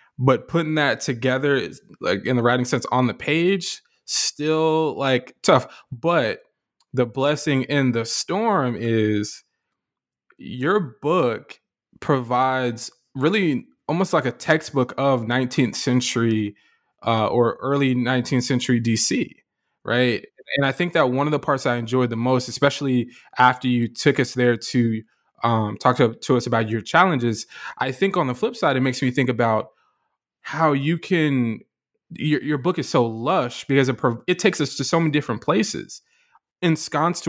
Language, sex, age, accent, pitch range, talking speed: English, male, 20-39, American, 120-145 Hz, 160 wpm